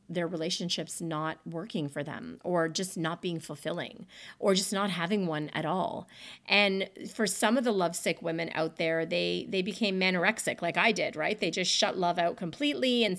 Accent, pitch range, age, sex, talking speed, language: American, 175-235 Hz, 30-49, female, 190 wpm, English